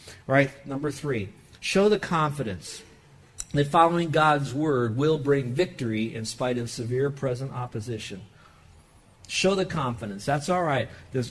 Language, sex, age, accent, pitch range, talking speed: English, male, 50-69, American, 125-155 Hz, 140 wpm